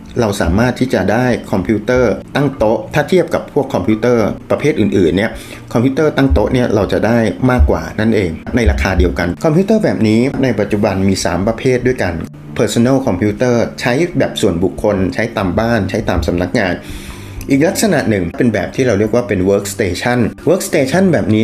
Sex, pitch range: male, 95-125 Hz